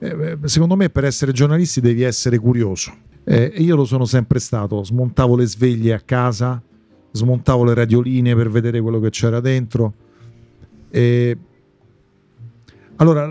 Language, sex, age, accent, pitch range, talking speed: Italian, male, 50-69, native, 115-160 Hz, 130 wpm